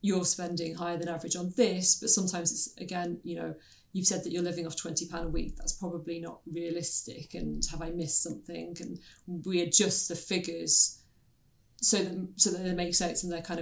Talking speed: 200 wpm